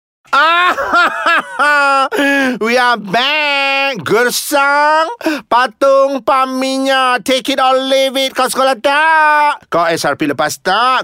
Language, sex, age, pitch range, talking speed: Malay, male, 30-49, 185-260 Hz, 120 wpm